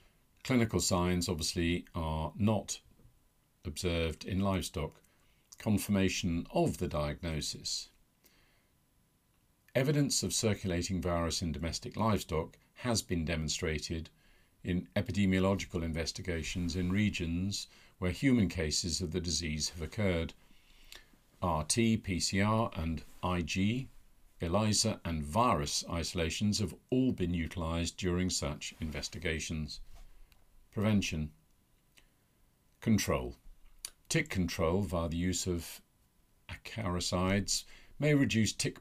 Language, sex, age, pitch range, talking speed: English, male, 50-69, 85-100 Hz, 95 wpm